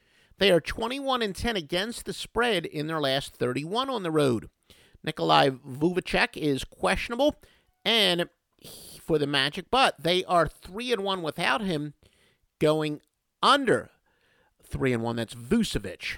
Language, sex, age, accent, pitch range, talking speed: English, male, 50-69, American, 130-185 Hz, 120 wpm